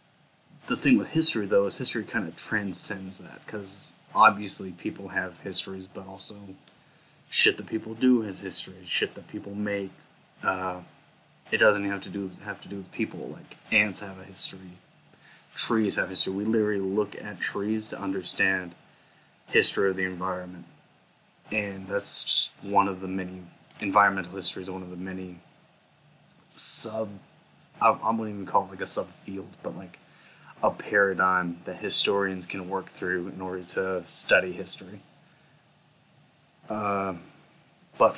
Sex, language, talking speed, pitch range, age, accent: male, English, 155 wpm, 95-110 Hz, 20-39, American